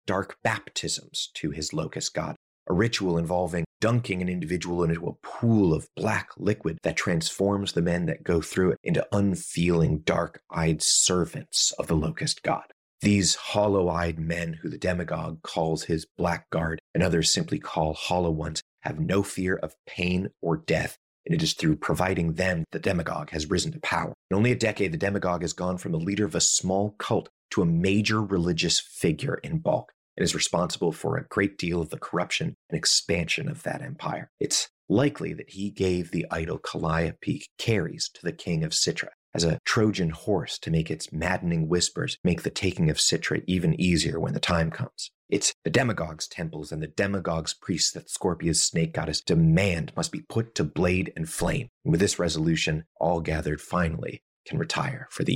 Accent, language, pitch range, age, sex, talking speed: American, English, 80-100 Hz, 30-49, male, 185 wpm